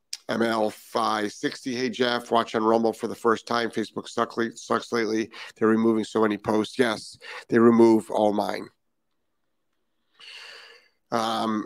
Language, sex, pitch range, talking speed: English, male, 105-115 Hz, 130 wpm